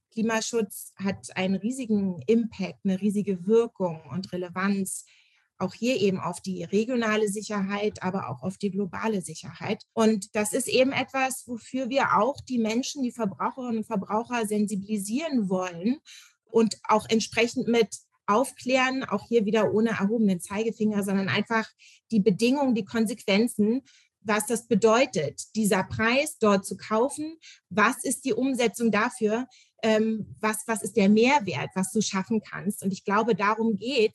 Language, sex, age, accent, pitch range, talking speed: German, female, 30-49, German, 195-230 Hz, 150 wpm